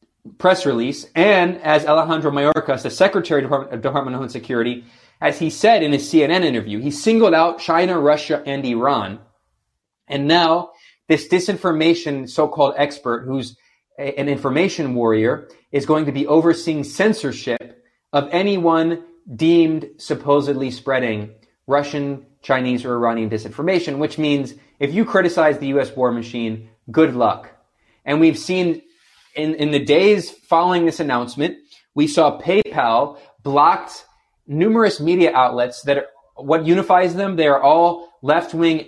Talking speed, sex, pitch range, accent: 140 wpm, male, 135-165 Hz, American